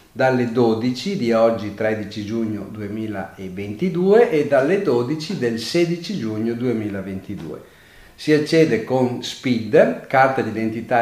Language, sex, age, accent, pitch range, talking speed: Italian, male, 50-69, native, 110-145 Hz, 110 wpm